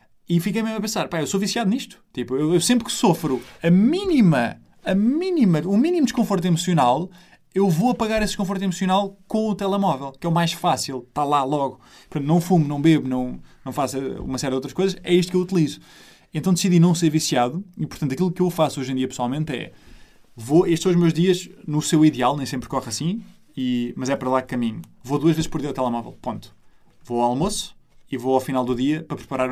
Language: Portuguese